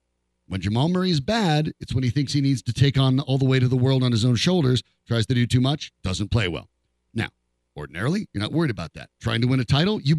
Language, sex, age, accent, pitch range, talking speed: English, male, 40-59, American, 105-155 Hz, 265 wpm